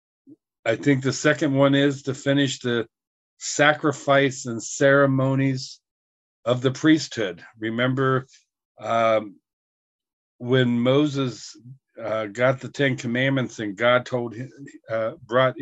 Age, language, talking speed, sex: 50-69, English, 115 wpm, male